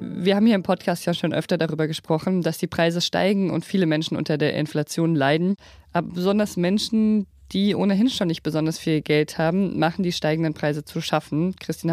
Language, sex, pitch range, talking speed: German, female, 155-190 Hz, 195 wpm